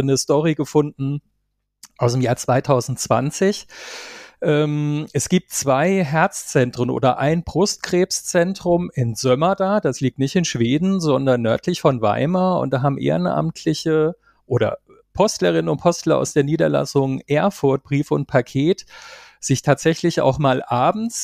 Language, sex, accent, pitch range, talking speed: German, male, German, 130-165 Hz, 130 wpm